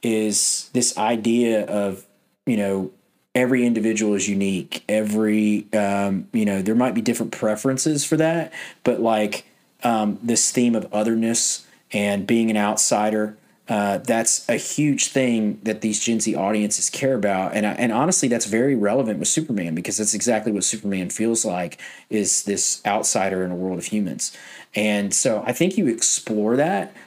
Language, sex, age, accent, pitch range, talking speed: English, male, 30-49, American, 100-120 Hz, 160 wpm